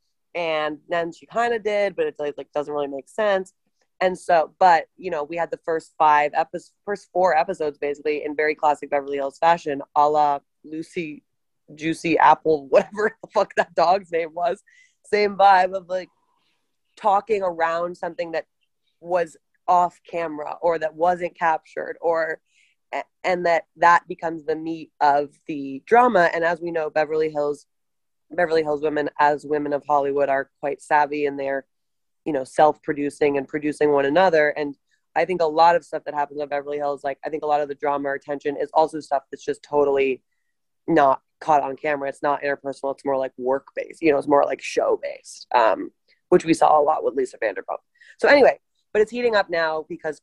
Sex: female